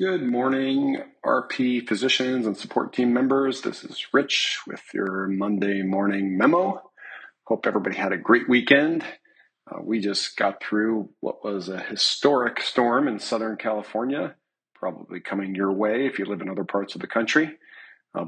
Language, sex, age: English, male, 40-59